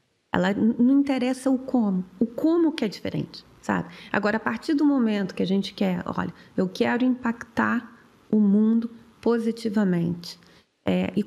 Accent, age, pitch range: Brazilian, 30-49, 190-225 Hz